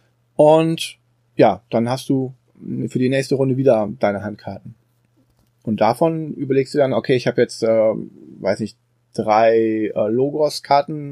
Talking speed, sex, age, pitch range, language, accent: 150 wpm, male, 30-49, 120-150 Hz, German, German